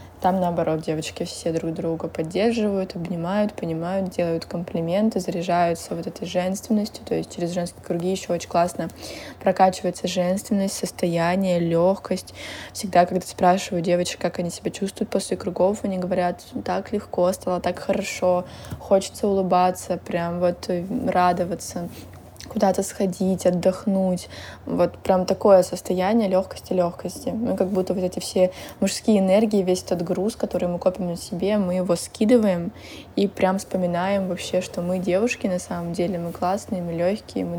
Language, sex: Russian, female